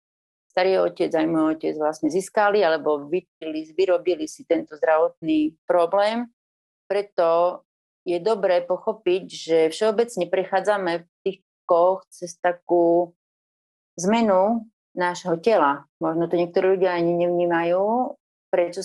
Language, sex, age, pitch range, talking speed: Slovak, female, 30-49, 170-210 Hz, 115 wpm